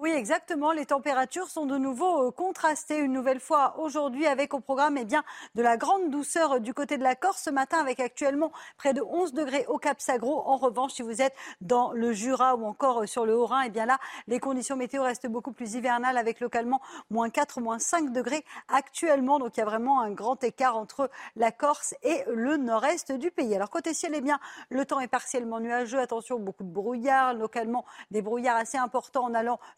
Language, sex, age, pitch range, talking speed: French, female, 40-59, 235-290 Hz, 215 wpm